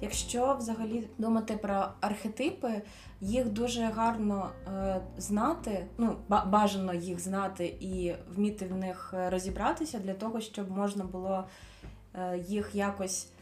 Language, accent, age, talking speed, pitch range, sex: Ukrainian, native, 20-39, 115 wpm, 185-215 Hz, female